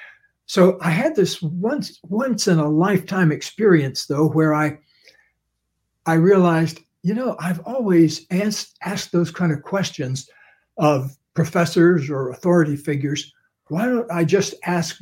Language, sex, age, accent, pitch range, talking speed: English, male, 60-79, American, 150-180 Hz, 130 wpm